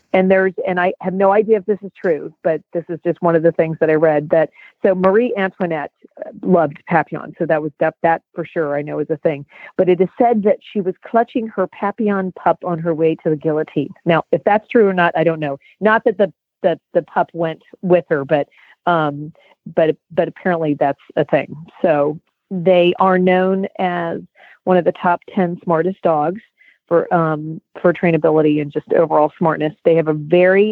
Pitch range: 155-185 Hz